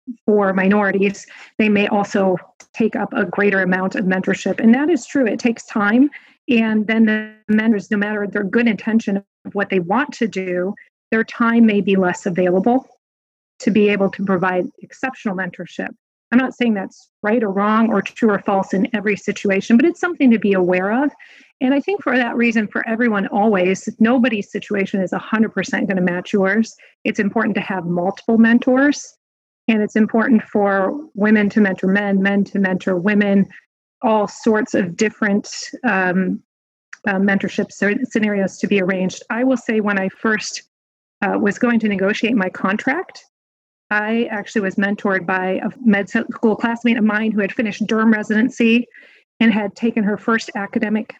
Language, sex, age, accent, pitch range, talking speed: English, female, 40-59, American, 200-235 Hz, 175 wpm